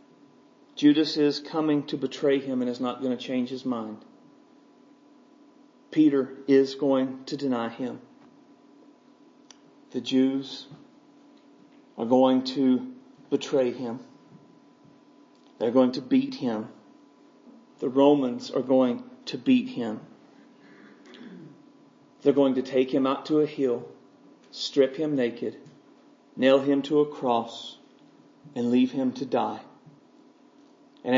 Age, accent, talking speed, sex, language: 40-59, American, 120 wpm, male, English